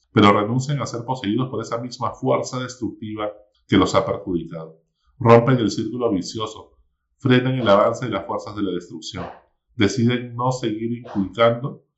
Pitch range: 100-125 Hz